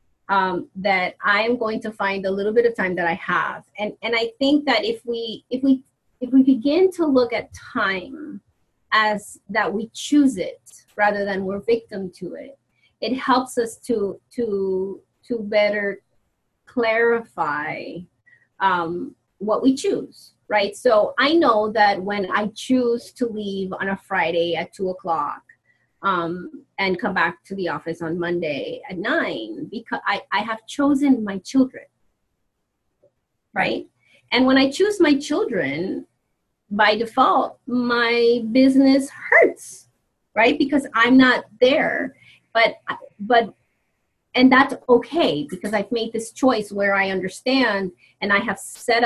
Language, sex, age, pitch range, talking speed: English, female, 30-49, 200-265 Hz, 150 wpm